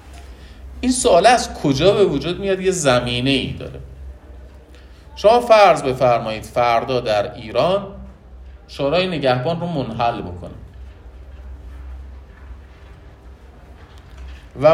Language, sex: Persian, male